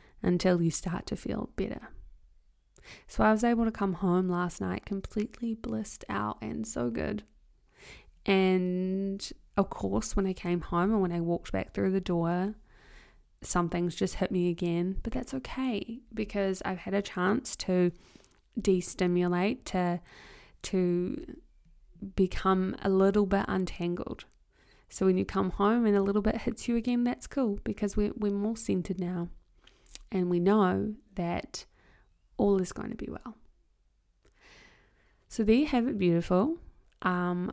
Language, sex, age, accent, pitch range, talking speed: English, female, 20-39, Australian, 180-215 Hz, 150 wpm